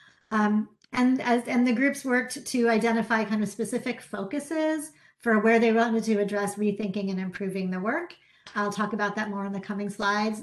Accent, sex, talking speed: American, female, 190 wpm